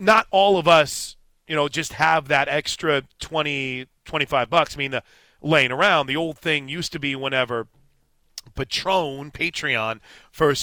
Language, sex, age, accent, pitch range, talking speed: English, male, 40-59, American, 135-165 Hz, 160 wpm